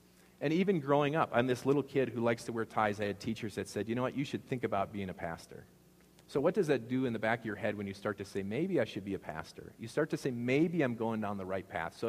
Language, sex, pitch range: English, male, 95-120 Hz